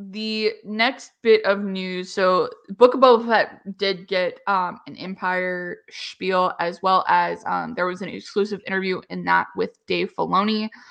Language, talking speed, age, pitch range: English, 165 wpm, 20-39, 190-220 Hz